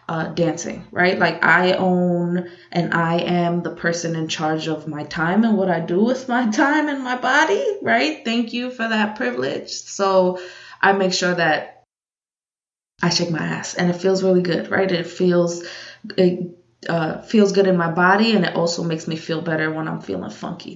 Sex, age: female, 20-39